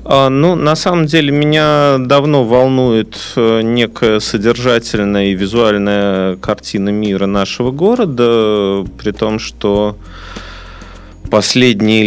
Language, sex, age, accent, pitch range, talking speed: Russian, male, 30-49, native, 90-115 Hz, 95 wpm